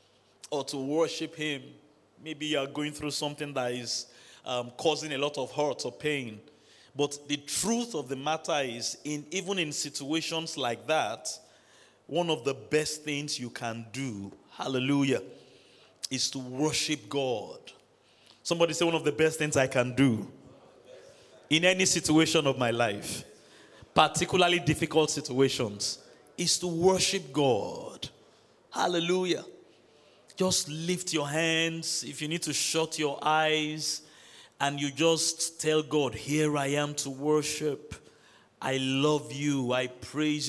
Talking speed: 140 wpm